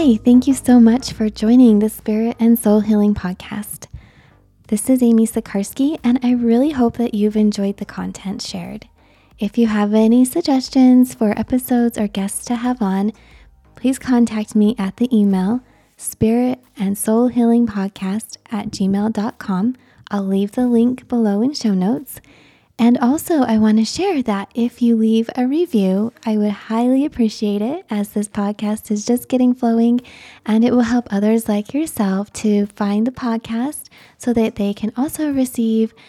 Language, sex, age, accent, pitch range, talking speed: English, female, 20-39, American, 210-250 Hz, 170 wpm